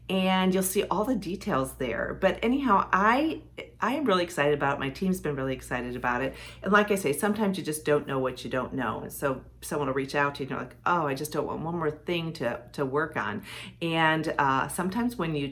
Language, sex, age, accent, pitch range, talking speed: English, female, 40-59, American, 140-190 Hz, 245 wpm